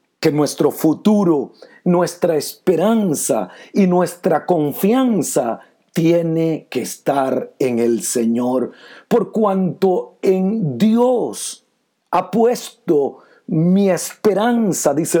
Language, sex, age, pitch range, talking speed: Spanish, male, 50-69, 165-225 Hz, 90 wpm